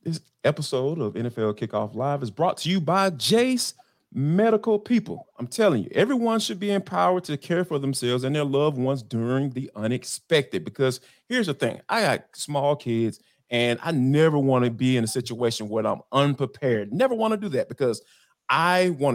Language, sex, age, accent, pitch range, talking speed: English, male, 30-49, American, 135-210 Hz, 190 wpm